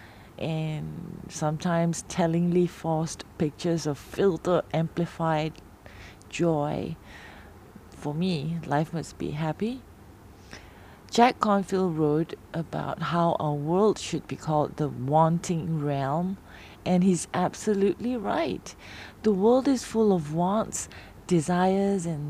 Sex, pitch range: female, 145-195 Hz